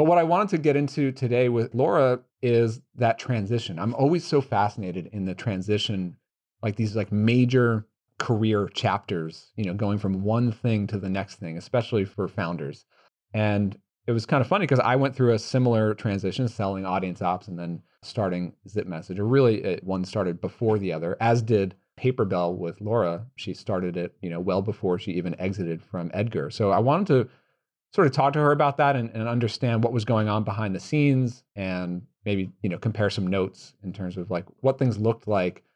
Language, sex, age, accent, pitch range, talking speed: English, male, 40-59, American, 95-120 Hz, 200 wpm